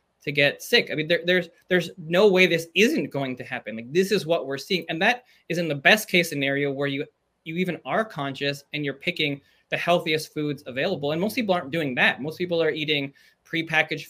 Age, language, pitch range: 20-39, English, 135-165 Hz